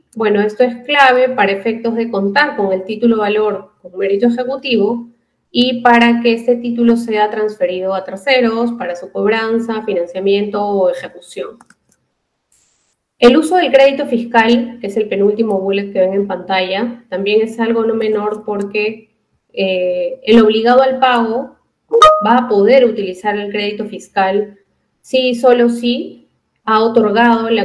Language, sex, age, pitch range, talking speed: Spanish, female, 30-49, 205-250 Hz, 150 wpm